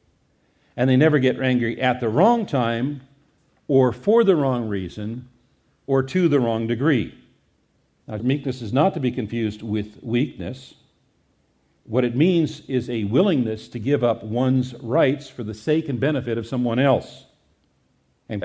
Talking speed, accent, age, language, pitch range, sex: 155 wpm, American, 50-69, English, 120-170 Hz, male